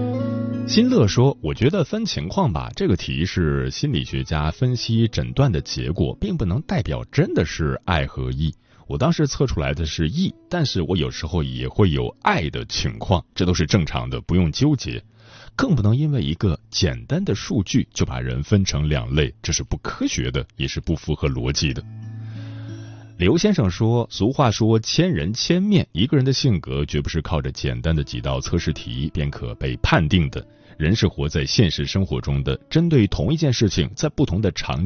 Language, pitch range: Chinese, 75-115 Hz